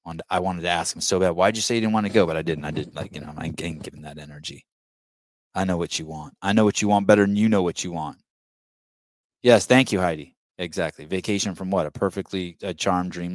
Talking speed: 265 wpm